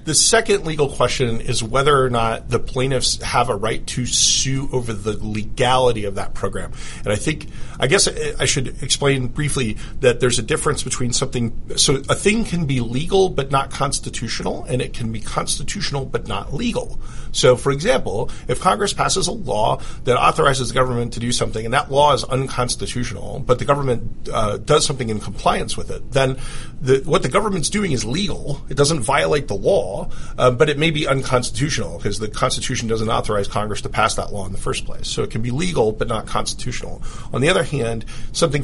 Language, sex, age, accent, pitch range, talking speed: English, male, 40-59, American, 115-145 Hz, 200 wpm